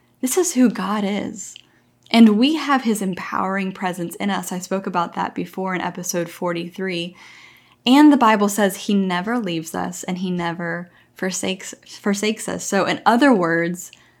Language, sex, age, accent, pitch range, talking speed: English, female, 10-29, American, 175-215 Hz, 165 wpm